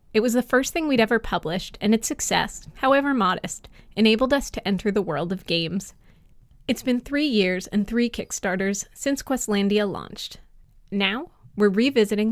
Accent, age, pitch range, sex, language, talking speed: American, 20-39, 195-255 Hz, female, English, 165 wpm